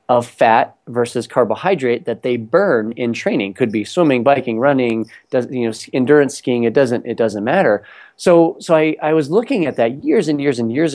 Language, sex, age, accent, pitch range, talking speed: English, male, 30-49, American, 120-150 Hz, 205 wpm